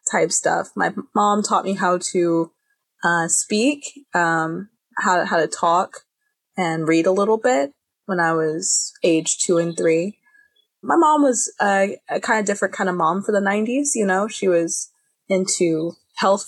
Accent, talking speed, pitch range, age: American, 175 wpm, 170-215 Hz, 20-39